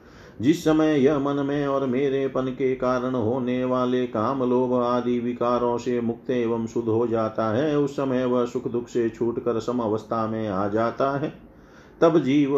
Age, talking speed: 40-59, 180 wpm